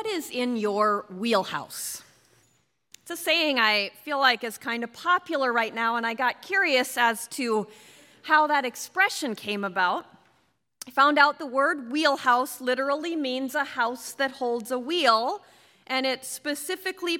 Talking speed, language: 155 wpm, English